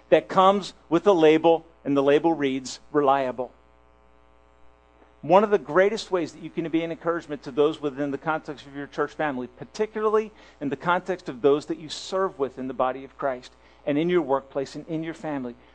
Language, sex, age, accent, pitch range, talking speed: English, male, 50-69, American, 130-170 Hz, 200 wpm